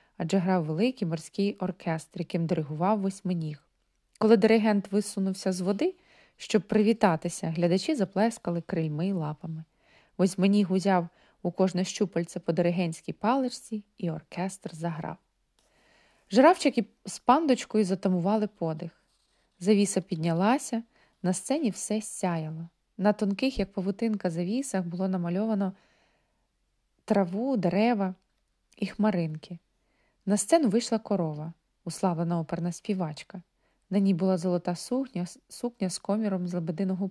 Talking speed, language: 110 wpm, Ukrainian